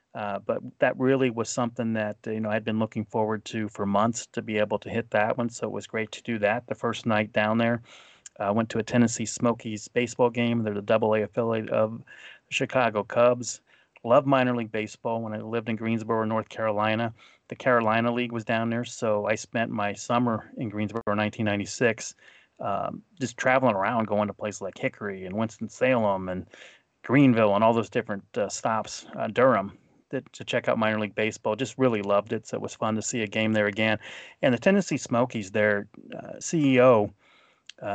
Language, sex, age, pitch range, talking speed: English, male, 30-49, 105-120 Hz, 200 wpm